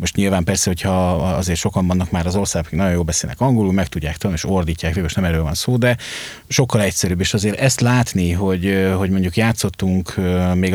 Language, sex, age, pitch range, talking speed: Hungarian, male, 30-49, 90-115 Hz, 200 wpm